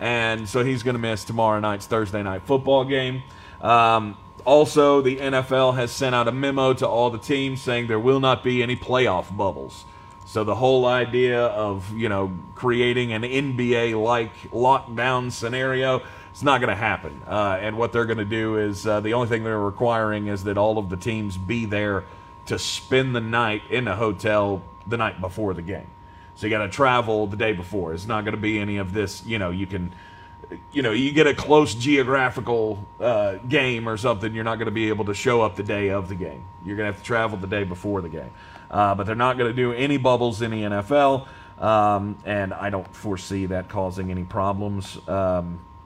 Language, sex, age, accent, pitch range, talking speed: English, male, 30-49, American, 100-130 Hz, 210 wpm